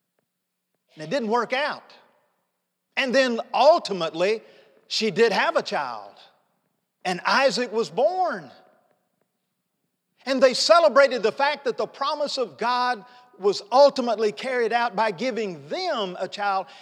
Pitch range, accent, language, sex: 170-240 Hz, American, English, male